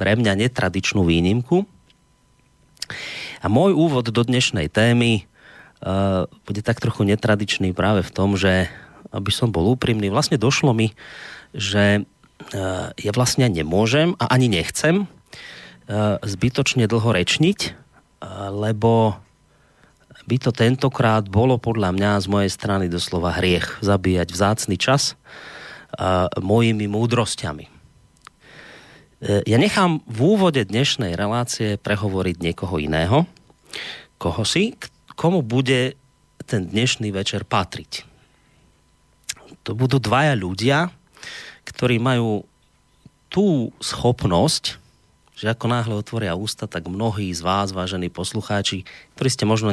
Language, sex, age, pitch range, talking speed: Slovak, male, 30-49, 95-125 Hz, 115 wpm